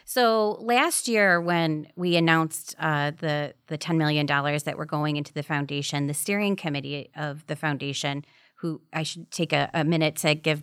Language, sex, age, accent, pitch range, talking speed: English, female, 30-49, American, 145-165 Hz, 185 wpm